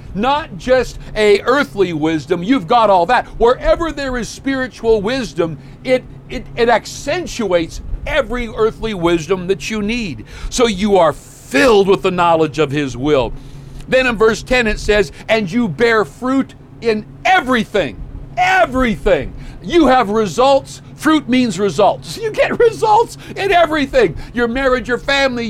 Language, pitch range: English, 190-250 Hz